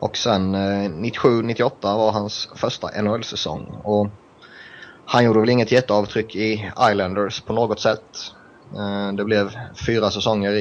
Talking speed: 140 wpm